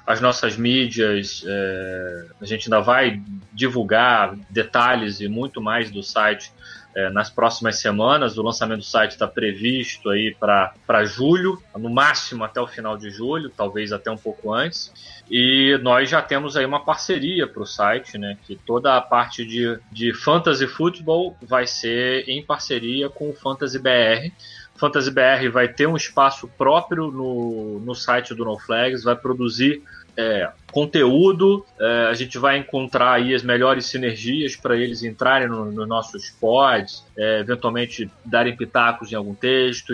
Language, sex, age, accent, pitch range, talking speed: Portuguese, male, 20-39, Brazilian, 110-130 Hz, 160 wpm